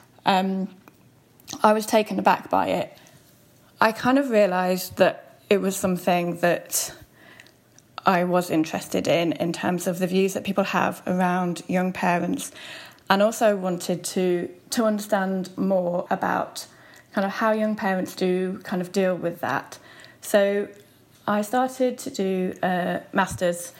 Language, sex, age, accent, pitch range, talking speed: English, female, 10-29, British, 180-205 Hz, 145 wpm